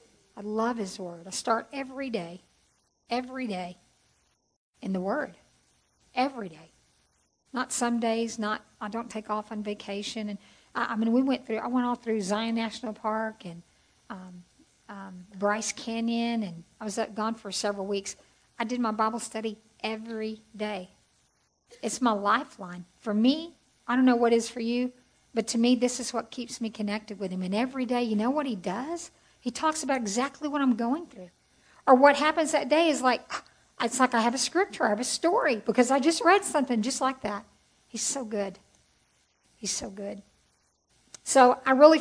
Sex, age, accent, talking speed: female, 50-69, American, 185 wpm